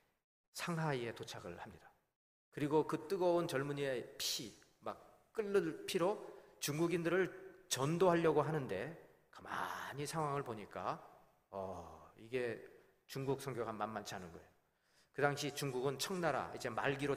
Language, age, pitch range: Korean, 40-59, 125-175 Hz